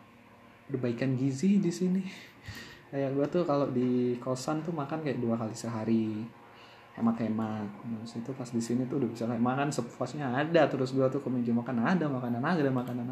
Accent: native